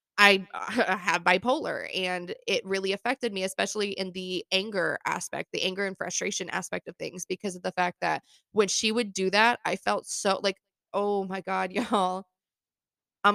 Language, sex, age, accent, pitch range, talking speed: English, female, 20-39, American, 180-205 Hz, 180 wpm